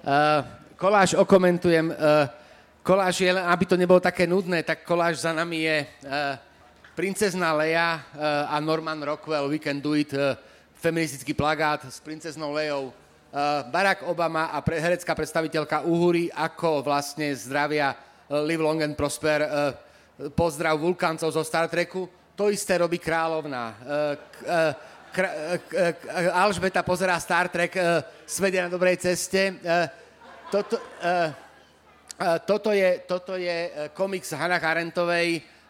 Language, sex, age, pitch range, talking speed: Slovak, male, 30-49, 150-175 Hz, 130 wpm